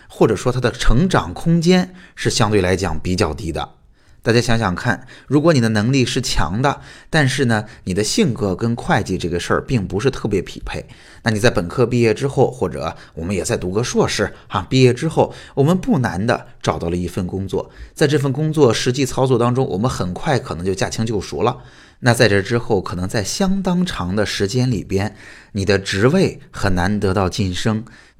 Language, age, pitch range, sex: Chinese, 20-39, 95-135 Hz, male